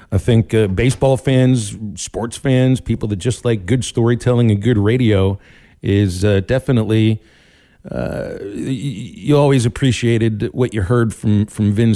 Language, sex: English, male